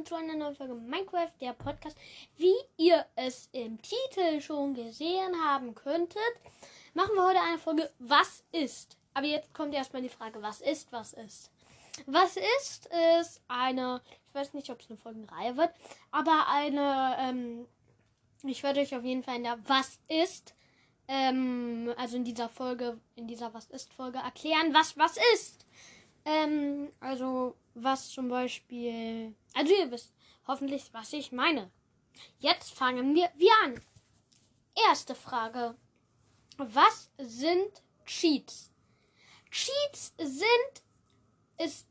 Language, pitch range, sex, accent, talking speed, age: German, 250-330 Hz, female, German, 140 wpm, 10-29